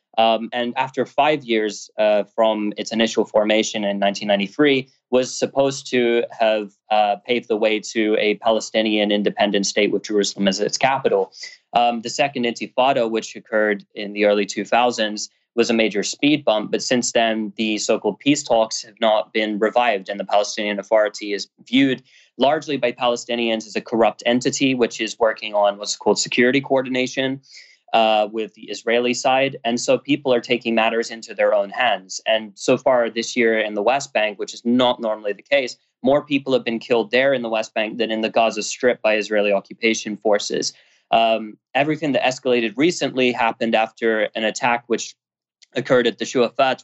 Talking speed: 180 wpm